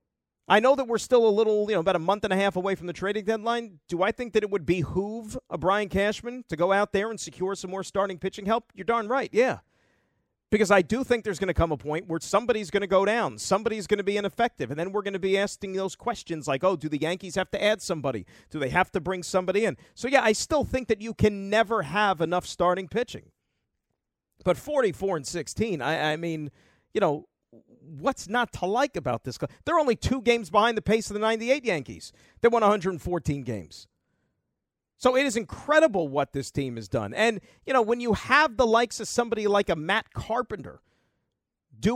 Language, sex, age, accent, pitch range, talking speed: English, male, 40-59, American, 170-225 Hz, 225 wpm